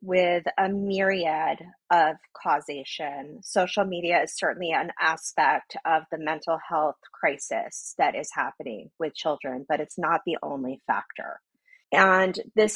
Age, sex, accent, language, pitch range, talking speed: 30-49, female, American, English, 175-215 Hz, 135 wpm